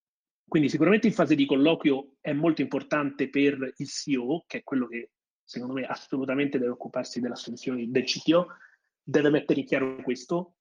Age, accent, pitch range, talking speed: 30-49, native, 130-165 Hz, 165 wpm